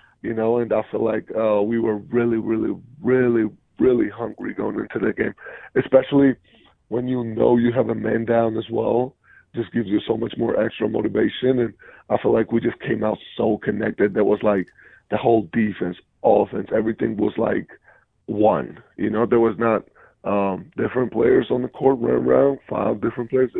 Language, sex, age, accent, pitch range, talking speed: English, male, 20-39, American, 105-120 Hz, 190 wpm